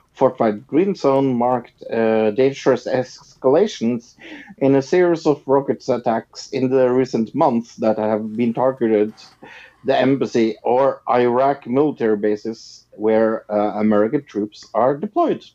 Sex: male